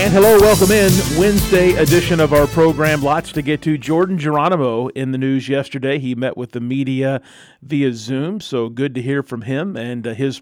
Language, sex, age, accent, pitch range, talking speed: English, male, 40-59, American, 125-150 Hz, 195 wpm